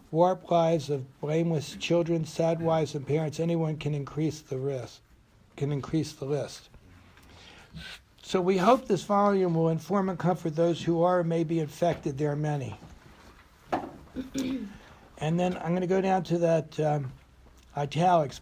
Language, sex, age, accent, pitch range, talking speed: English, male, 60-79, American, 150-180 Hz, 155 wpm